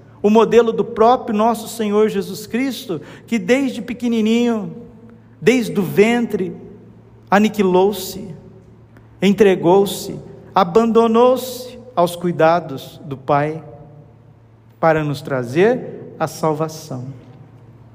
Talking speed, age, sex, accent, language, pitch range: 85 wpm, 50-69, male, Brazilian, Portuguese, 140-205 Hz